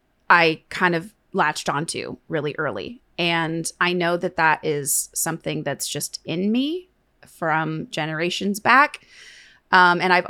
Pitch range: 160-195 Hz